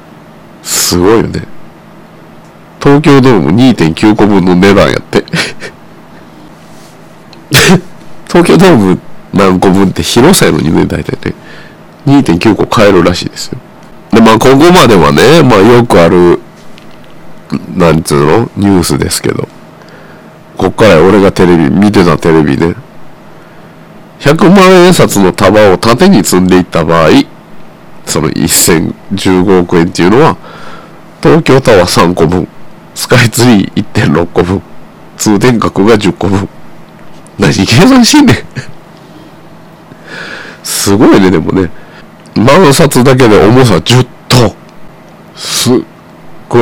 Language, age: Japanese, 50-69